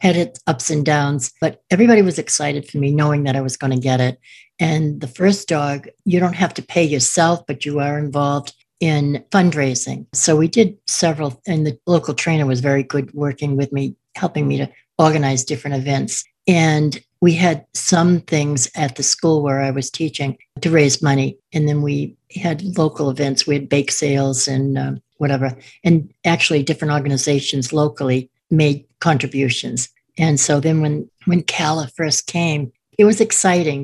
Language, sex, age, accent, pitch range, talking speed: English, female, 60-79, American, 140-170 Hz, 180 wpm